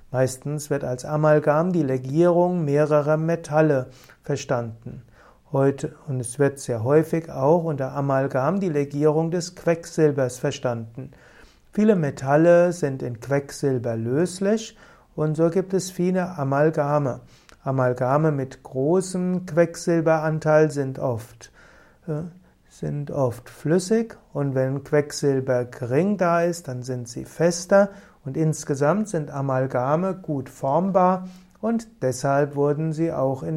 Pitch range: 135-170 Hz